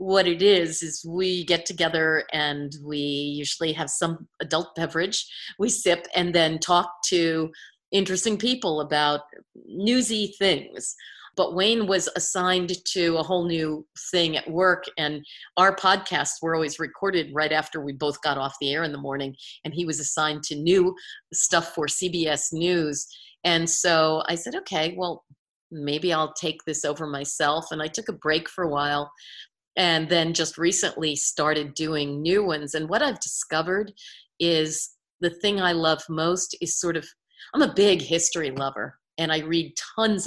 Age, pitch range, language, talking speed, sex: 40-59, 155-185 Hz, English, 170 wpm, female